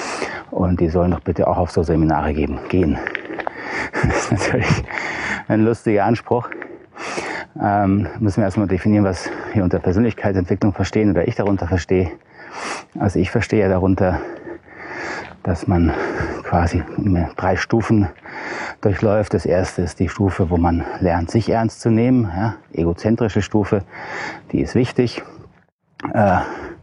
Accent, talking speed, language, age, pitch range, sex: German, 135 wpm, German, 30-49, 85-105 Hz, male